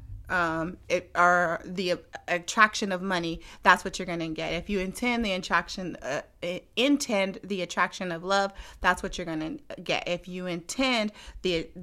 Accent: American